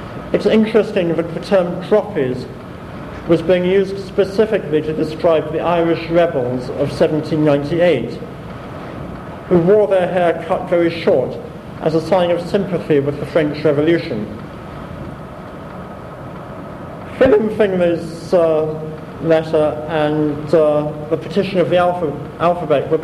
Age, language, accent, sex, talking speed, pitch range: 50-69, English, British, male, 130 wpm, 155-180 Hz